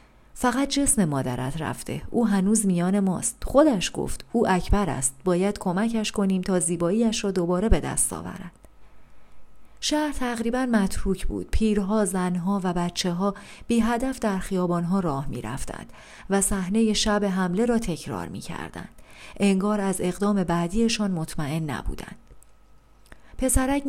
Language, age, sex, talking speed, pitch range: Persian, 40-59, female, 130 wpm, 180-225 Hz